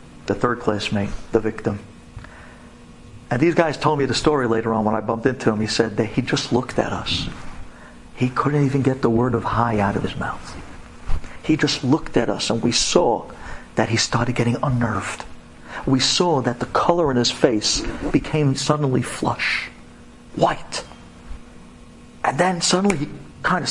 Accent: American